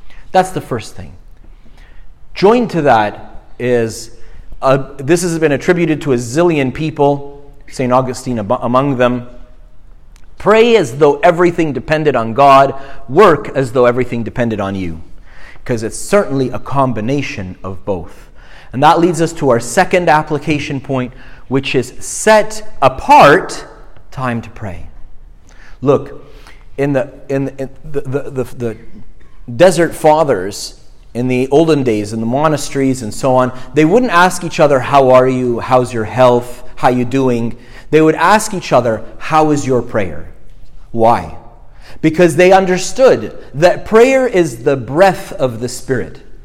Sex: male